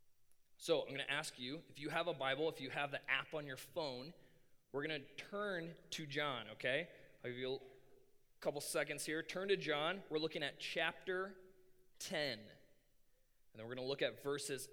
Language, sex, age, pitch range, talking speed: English, male, 20-39, 120-155 Hz, 200 wpm